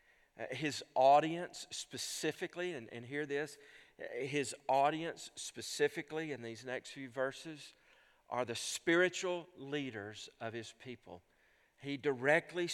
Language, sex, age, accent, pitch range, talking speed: English, male, 50-69, American, 140-175 Hz, 115 wpm